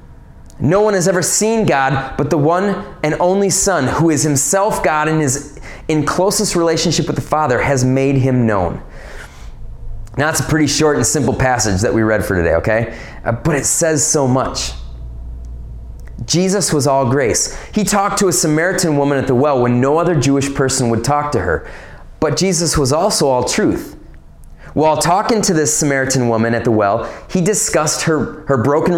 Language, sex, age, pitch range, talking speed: English, male, 30-49, 130-180 Hz, 185 wpm